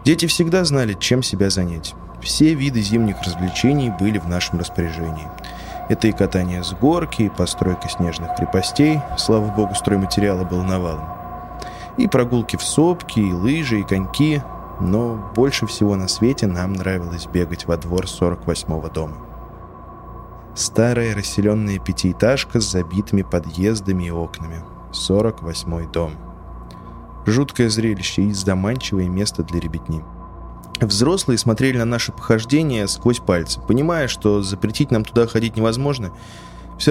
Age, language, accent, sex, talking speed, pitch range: 20-39, Russian, native, male, 130 wpm, 90-115 Hz